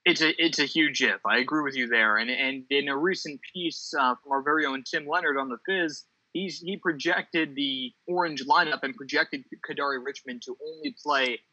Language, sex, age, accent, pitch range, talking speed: English, male, 20-39, American, 140-190 Hz, 210 wpm